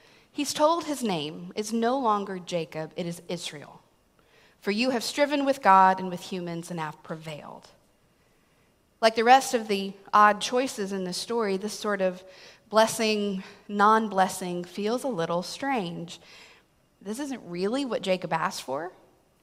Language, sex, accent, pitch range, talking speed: English, female, American, 185-235 Hz, 155 wpm